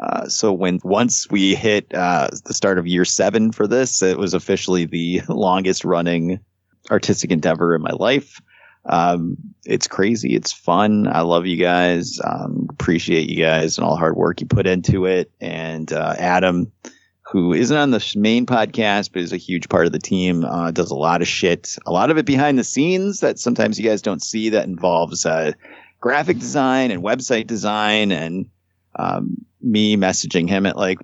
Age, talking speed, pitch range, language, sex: 30-49, 190 wpm, 85-105 Hz, English, male